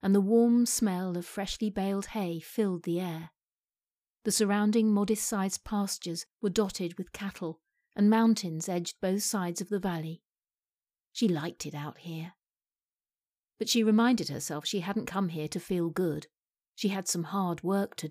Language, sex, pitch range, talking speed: English, female, 170-210 Hz, 160 wpm